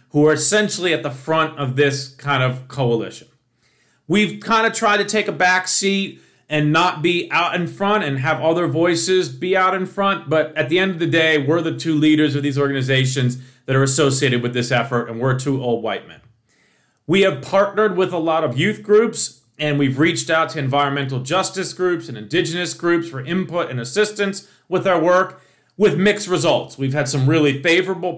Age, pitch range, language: 40-59, 135-180 Hz, English